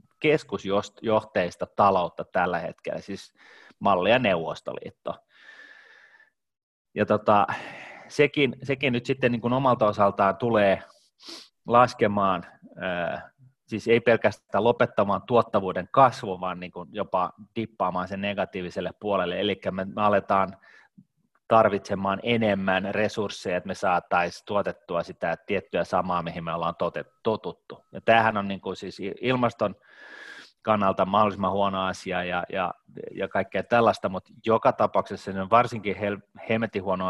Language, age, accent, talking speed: Finnish, 30-49, native, 110 wpm